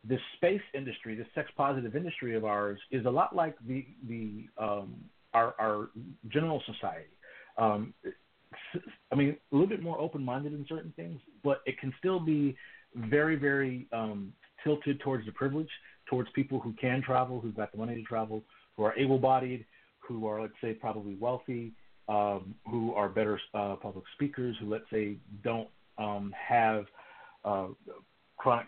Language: English